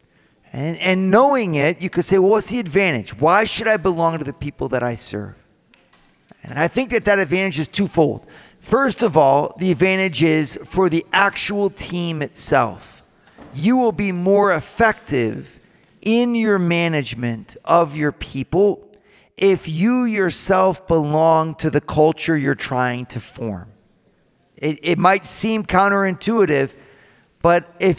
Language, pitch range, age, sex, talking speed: English, 145-195 Hz, 40-59, male, 150 wpm